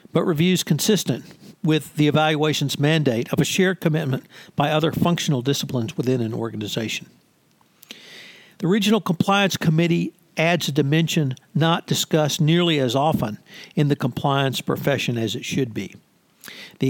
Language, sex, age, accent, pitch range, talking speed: English, male, 60-79, American, 140-175 Hz, 140 wpm